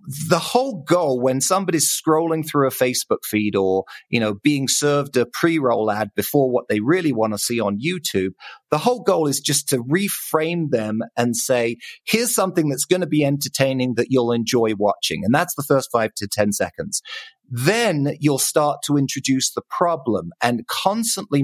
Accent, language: British, English